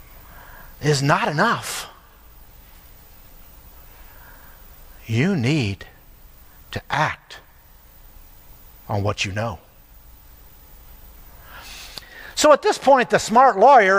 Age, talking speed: 60-79, 75 wpm